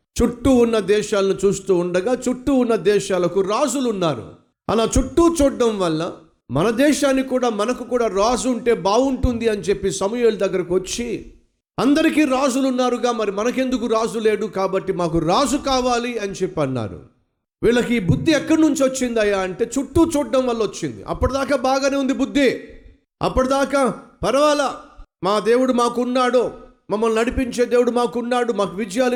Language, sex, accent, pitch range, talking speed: Telugu, male, native, 200-255 Hz, 140 wpm